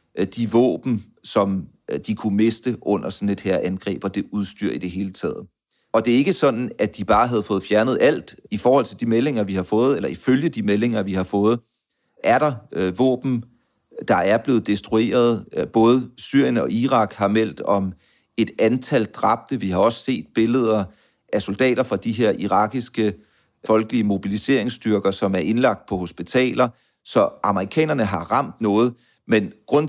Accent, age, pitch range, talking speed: native, 40-59, 100-120 Hz, 175 wpm